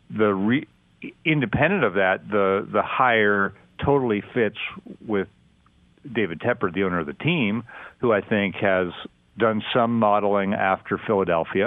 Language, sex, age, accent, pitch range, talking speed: English, male, 50-69, American, 95-115 Hz, 140 wpm